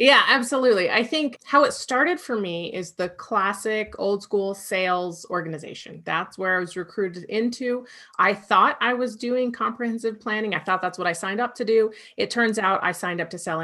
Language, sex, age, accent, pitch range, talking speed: English, female, 30-49, American, 170-220 Hz, 200 wpm